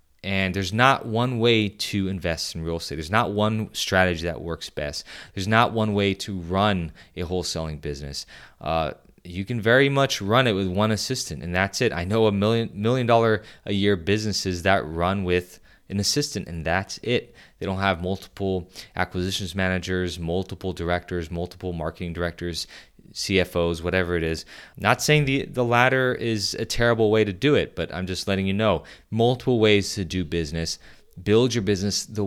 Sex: male